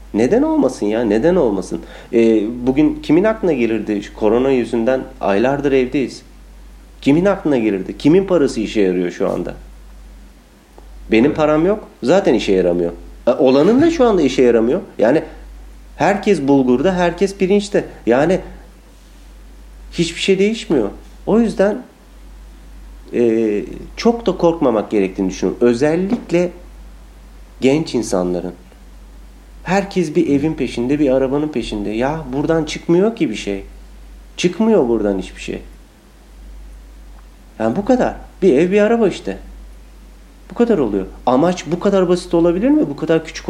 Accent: native